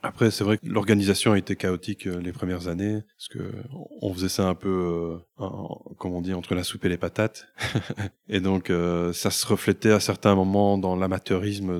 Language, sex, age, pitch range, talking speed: French, male, 20-39, 95-115 Hz, 195 wpm